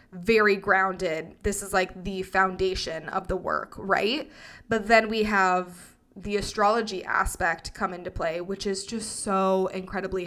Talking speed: 150 wpm